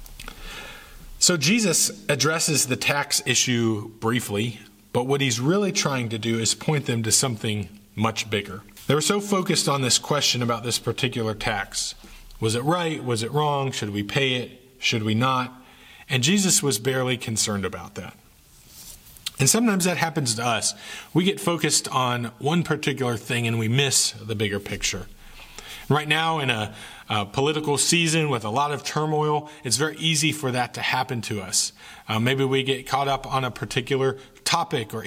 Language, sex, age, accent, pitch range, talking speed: English, male, 30-49, American, 115-145 Hz, 175 wpm